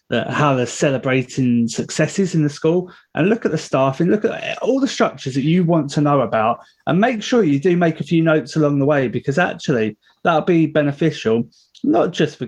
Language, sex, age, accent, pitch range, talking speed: English, male, 30-49, British, 130-175 Hz, 210 wpm